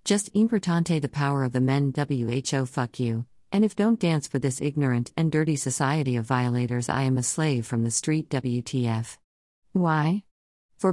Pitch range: 125-160 Hz